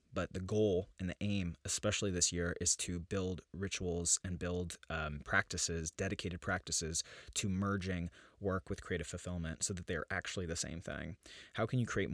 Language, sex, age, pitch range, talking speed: English, male, 20-39, 85-105 Hz, 180 wpm